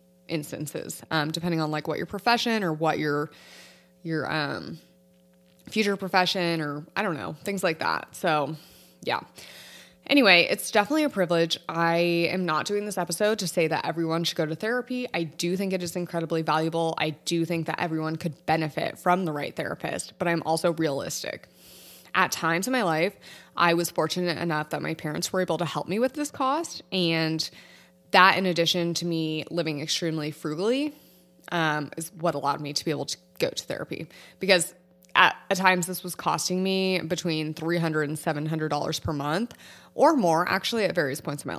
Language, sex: English, female